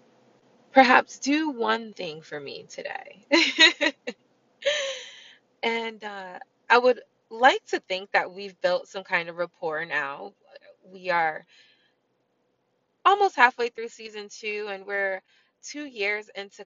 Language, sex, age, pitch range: English, female, 20-39, 185-245 Hz